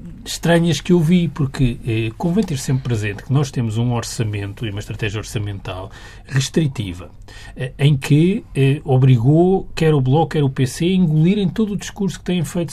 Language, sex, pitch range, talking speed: Portuguese, male, 115-160 Hz, 190 wpm